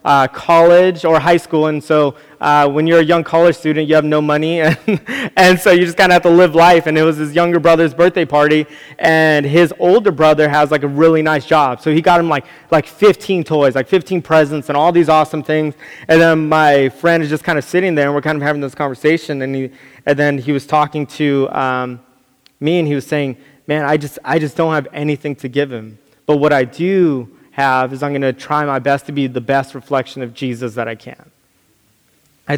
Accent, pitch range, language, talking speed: American, 145-175 Hz, English, 235 wpm